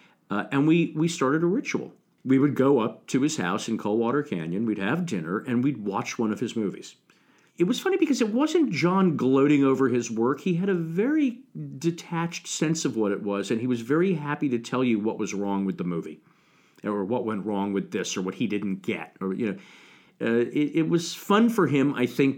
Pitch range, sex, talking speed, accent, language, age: 100-145 Hz, male, 230 wpm, American, English, 50-69